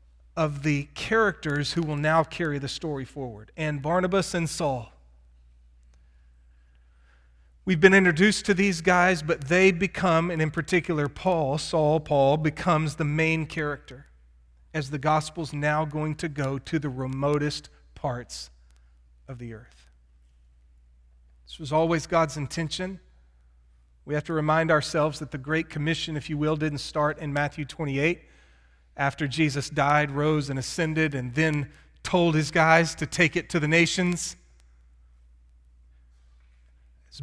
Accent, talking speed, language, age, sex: American, 140 wpm, English, 40-59, male